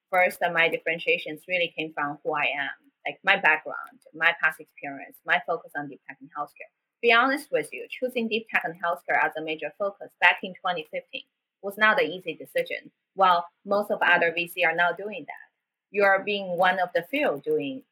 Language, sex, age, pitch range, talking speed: English, female, 20-39, 165-235 Hz, 210 wpm